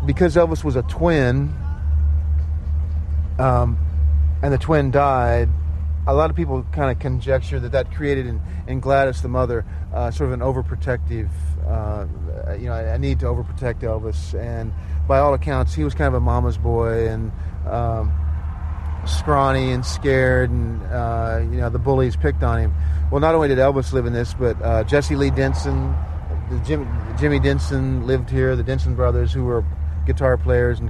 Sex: male